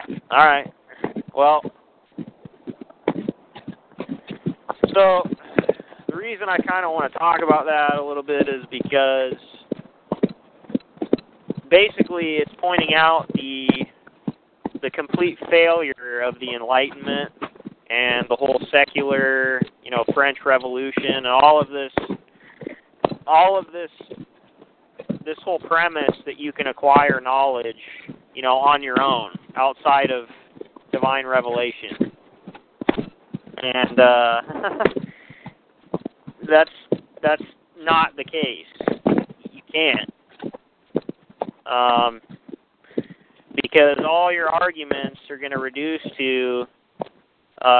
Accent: American